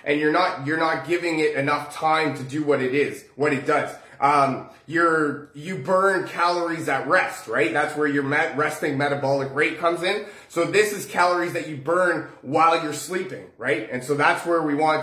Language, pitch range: English, 145-185 Hz